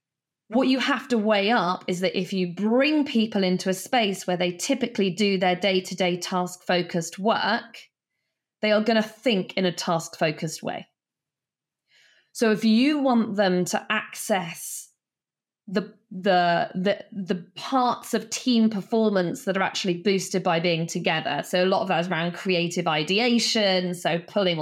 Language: English